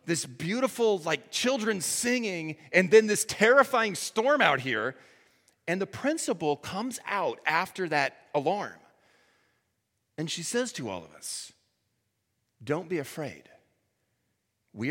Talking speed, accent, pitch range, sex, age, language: 125 wpm, American, 105-160 Hz, male, 30-49, English